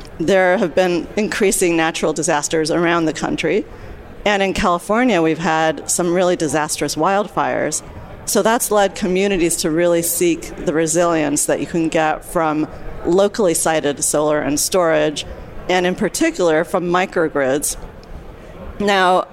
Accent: American